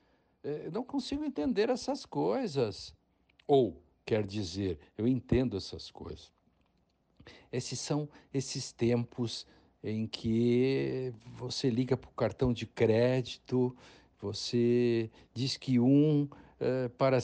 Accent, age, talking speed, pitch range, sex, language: Brazilian, 60-79, 110 wpm, 110-140 Hz, male, Portuguese